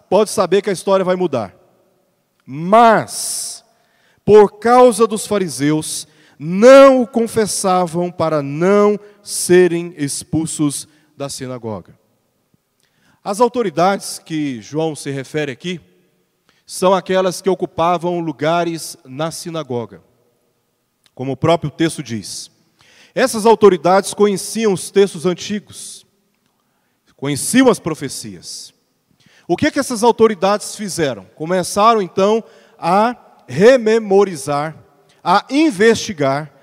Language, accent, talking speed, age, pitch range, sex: Portuguese, Brazilian, 100 wpm, 40-59, 155-220 Hz, male